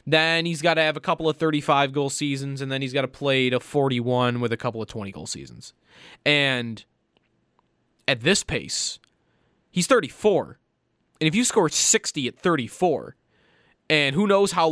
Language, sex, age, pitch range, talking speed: English, male, 20-39, 130-170 Hz, 165 wpm